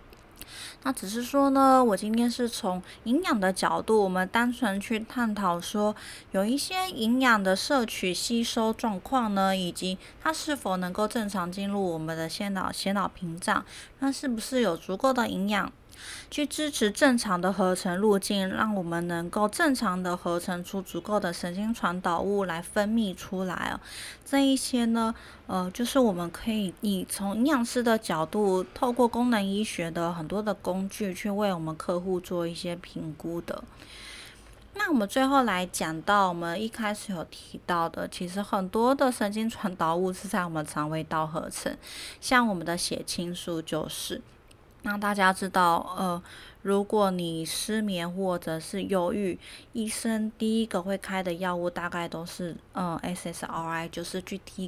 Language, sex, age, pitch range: Chinese, female, 20-39, 175-225 Hz